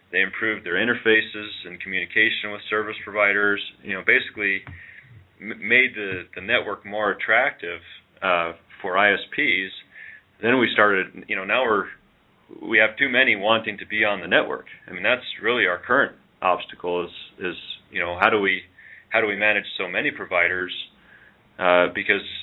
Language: English